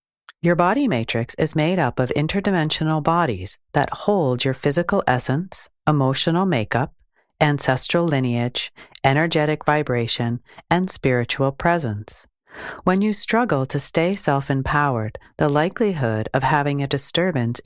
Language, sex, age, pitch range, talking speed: English, female, 40-59, 130-165 Hz, 120 wpm